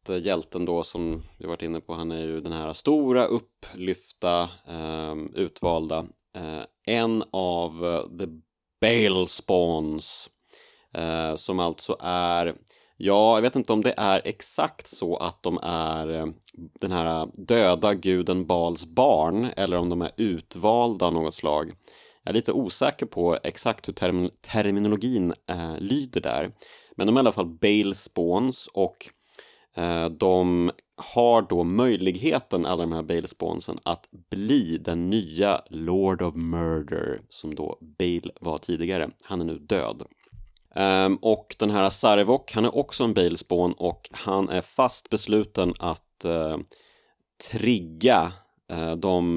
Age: 30-49